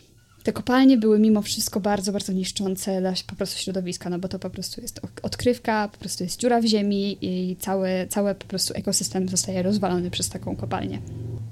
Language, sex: Polish, female